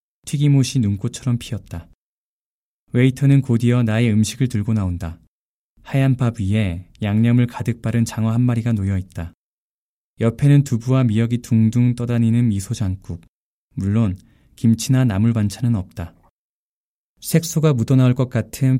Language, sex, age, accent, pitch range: Korean, male, 20-39, native, 100-125 Hz